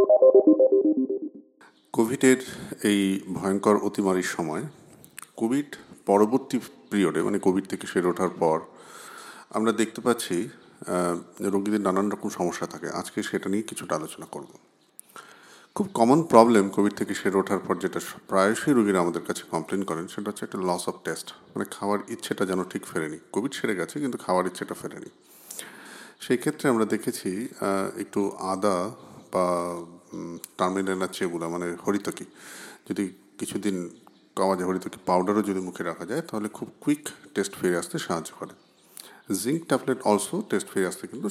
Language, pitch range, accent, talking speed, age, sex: English, 95-120 Hz, Indian, 70 wpm, 50-69, male